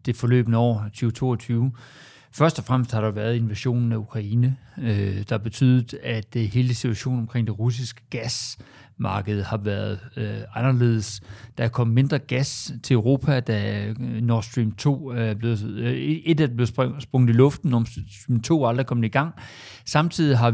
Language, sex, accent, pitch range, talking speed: Danish, male, native, 115-150 Hz, 165 wpm